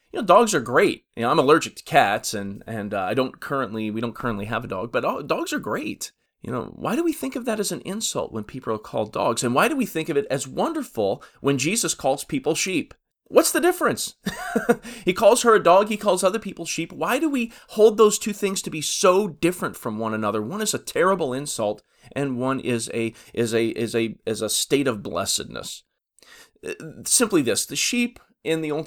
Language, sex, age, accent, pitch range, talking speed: English, male, 30-49, American, 110-175 Hz, 225 wpm